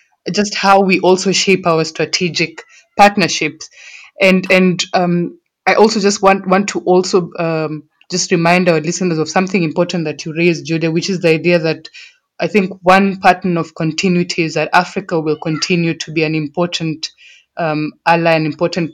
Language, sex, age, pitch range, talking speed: English, female, 20-39, 165-200 Hz, 170 wpm